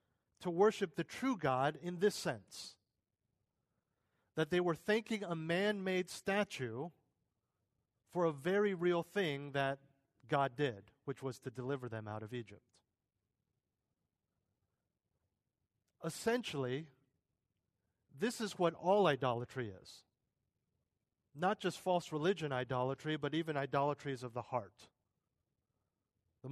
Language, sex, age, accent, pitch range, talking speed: English, male, 40-59, American, 110-160 Hz, 115 wpm